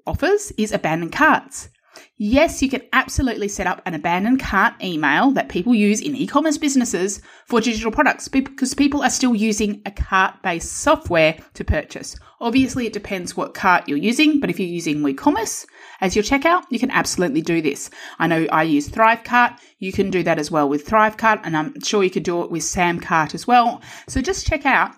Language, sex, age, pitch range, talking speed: English, female, 30-49, 165-245 Hz, 195 wpm